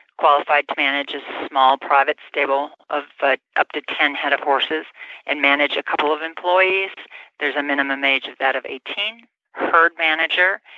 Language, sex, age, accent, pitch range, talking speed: English, female, 40-59, American, 135-160 Hz, 175 wpm